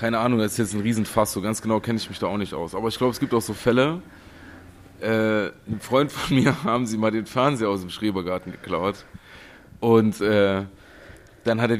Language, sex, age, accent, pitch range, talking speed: German, male, 30-49, German, 100-115 Hz, 225 wpm